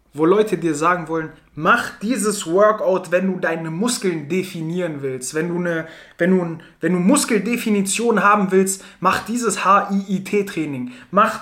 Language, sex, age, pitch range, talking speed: German, male, 20-39, 165-220 Hz, 145 wpm